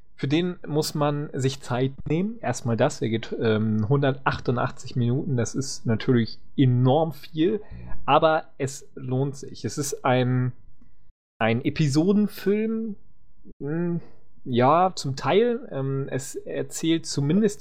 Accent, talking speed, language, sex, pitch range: German, 120 wpm, English, male, 125-155 Hz